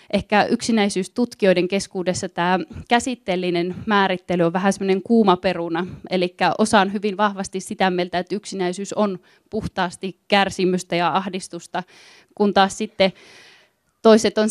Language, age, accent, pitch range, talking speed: Finnish, 20-39, native, 180-205 Hz, 115 wpm